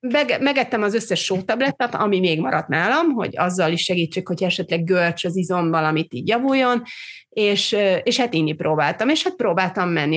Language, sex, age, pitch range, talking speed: Hungarian, female, 30-49, 175-215 Hz, 175 wpm